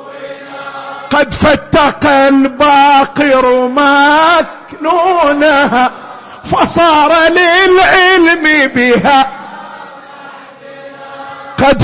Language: Arabic